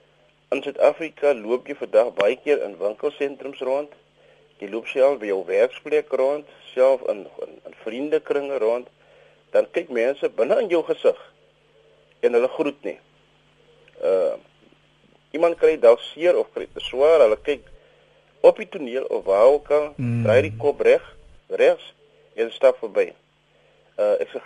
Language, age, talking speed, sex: Dutch, 50-69, 150 wpm, male